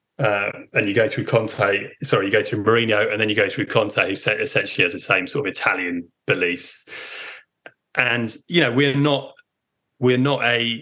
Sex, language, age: male, English, 30-49